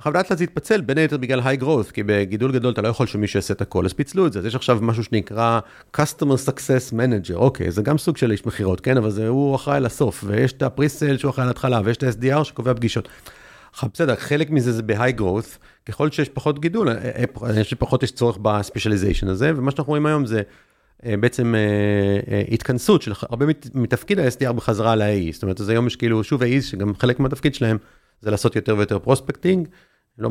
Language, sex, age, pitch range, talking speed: Hebrew, male, 40-59, 105-135 Hz, 165 wpm